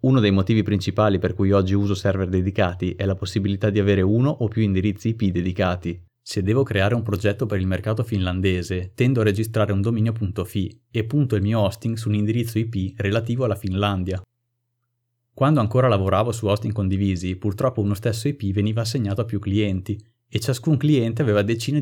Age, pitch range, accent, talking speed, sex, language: 30-49, 100-115 Hz, native, 185 wpm, male, Italian